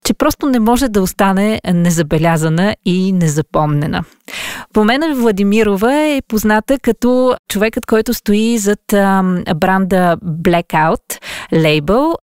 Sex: female